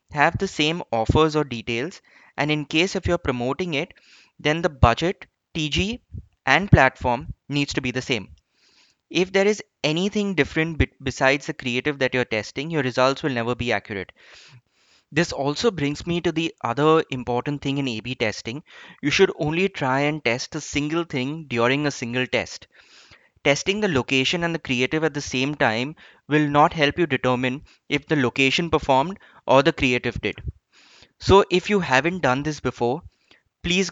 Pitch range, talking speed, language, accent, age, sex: 125-160 Hz, 170 wpm, English, Indian, 20-39, male